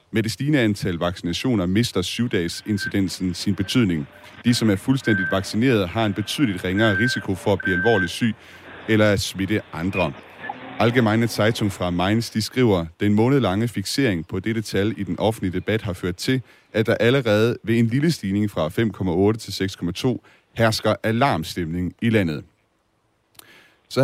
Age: 30-49